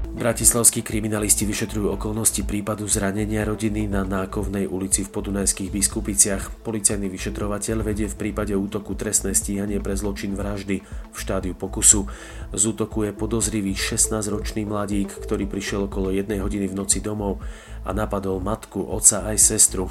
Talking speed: 140 wpm